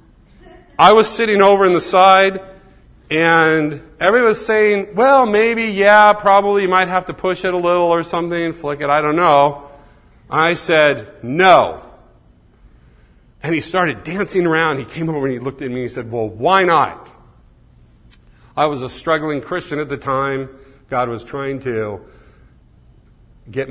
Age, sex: 50-69, male